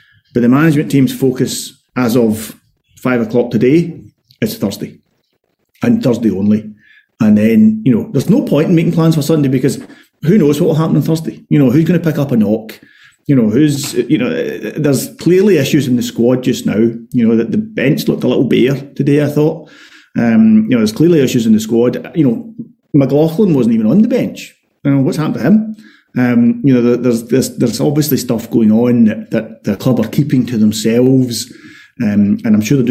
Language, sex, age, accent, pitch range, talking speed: English, male, 30-49, British, 120-170 Hz, 210 wpm